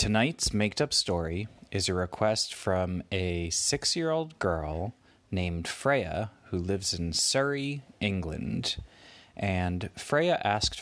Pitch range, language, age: 85-120 Hz, English, 30-49